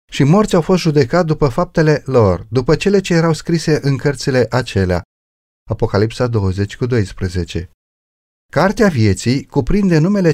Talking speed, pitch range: 135 wpm, 105-160 Hz